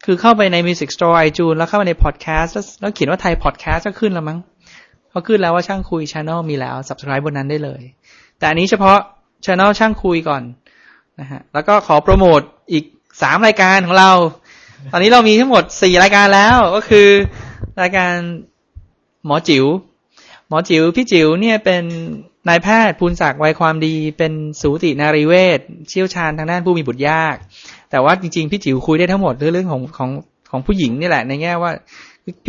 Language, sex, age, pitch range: Thai, male, 20-39, 150-190 Hz